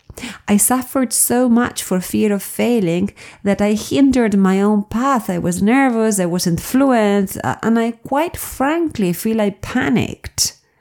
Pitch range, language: 175-220 Hz, English